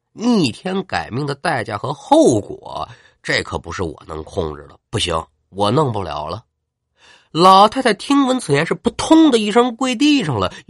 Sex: male